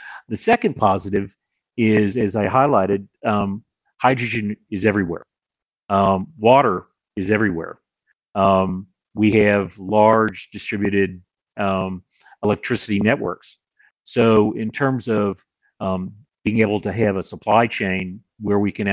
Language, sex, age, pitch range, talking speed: English, male, 40-59, 95-110 Hz, 120 wpm